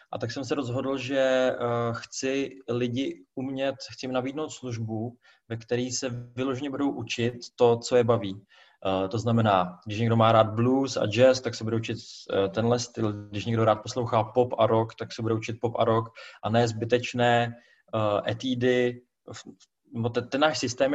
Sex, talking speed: male, 180 wpm